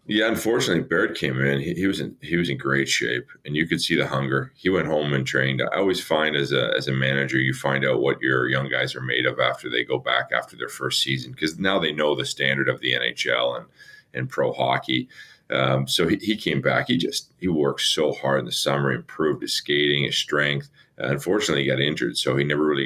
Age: 40-59